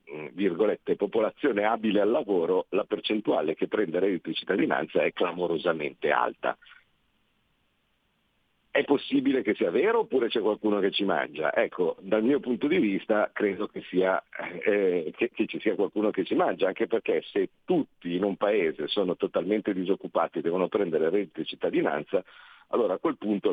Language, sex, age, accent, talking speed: Italian, male, 50-69, native, 165 wpm